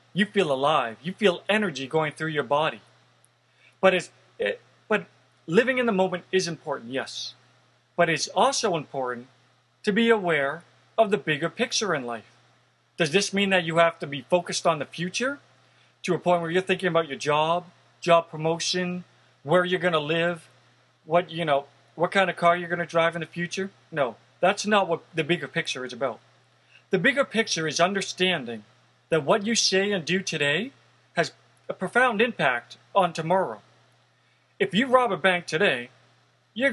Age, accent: 40-59, American